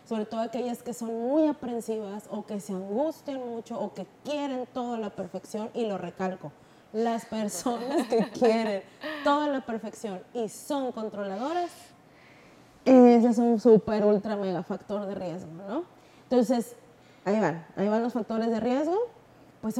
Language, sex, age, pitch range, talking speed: Spanish, female, 30-49, 210-260 Hz, 155 wpm